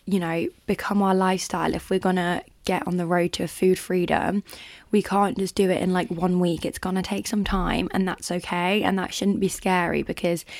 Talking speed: 215 wpm